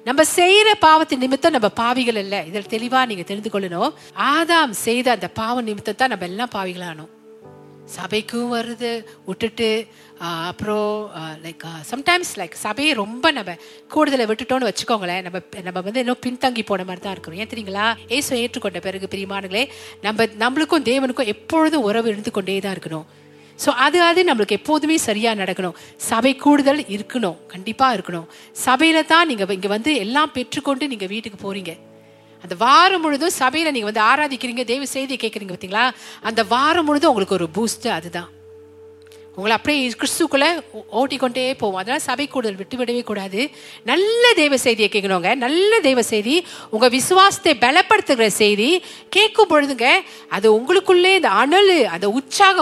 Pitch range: 200-275 Hz